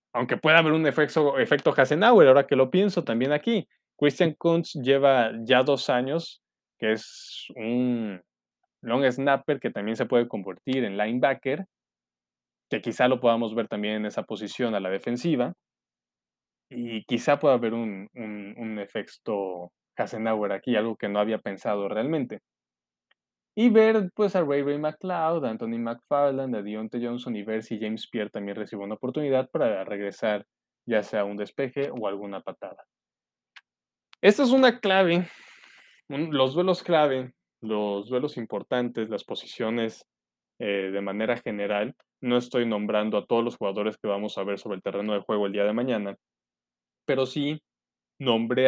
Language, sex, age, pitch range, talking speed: Spanish, male, 20-39, 100-135 Hz, 155 wpm